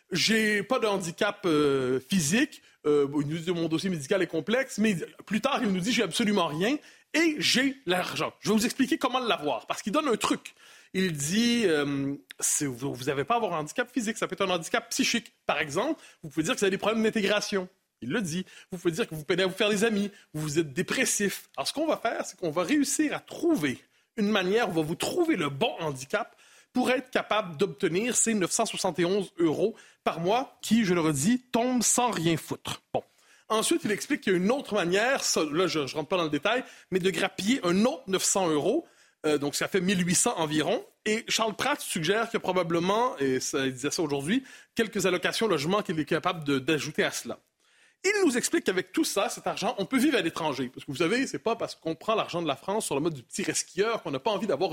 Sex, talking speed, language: male, 235 wpm, French